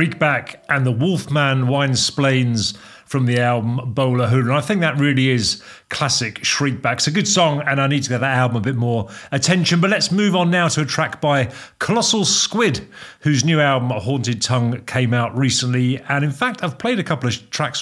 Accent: British